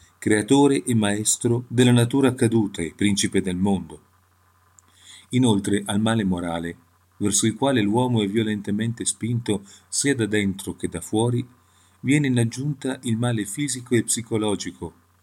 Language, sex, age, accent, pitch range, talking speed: Italian, male, 40-59, native, 95-125 Hz, 140 wpm